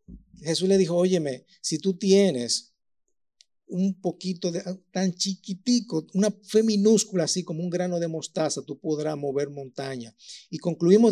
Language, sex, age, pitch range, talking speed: Spanish, male, 50-69, 155-200 Hz, 140 wpm